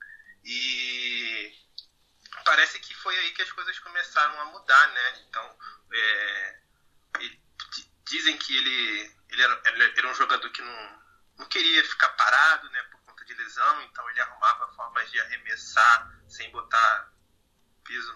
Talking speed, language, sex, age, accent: 140 wpm, Portuguese, male, 20-39, Brazilian